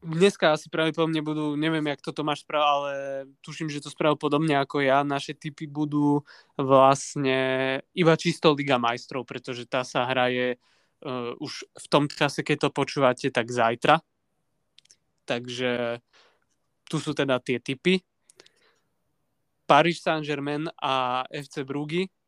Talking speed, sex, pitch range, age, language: 130 wpm, male, 130-155 Hz, 20-39, Slovak